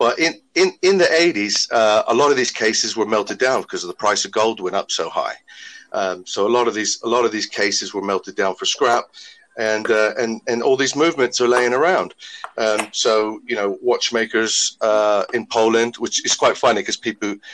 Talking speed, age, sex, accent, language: 220 wpm, 40-59, male, British, English